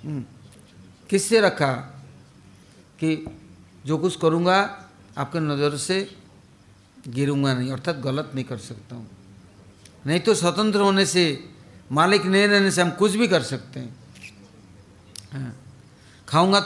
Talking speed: 120 wpm